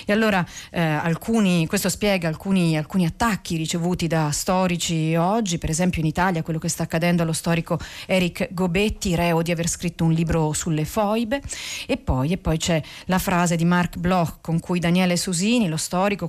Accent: native